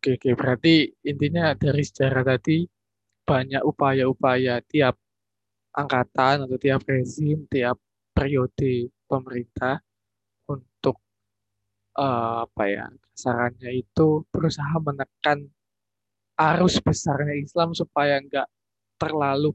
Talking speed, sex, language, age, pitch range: 100 wpm, male, Indonesian, 20-39, 120-155 Hz